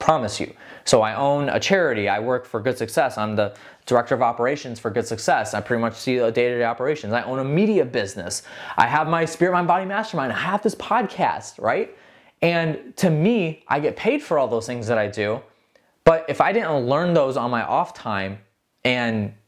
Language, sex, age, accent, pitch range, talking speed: English, male, 20-39, American, 115-170 Hz, 215 wpm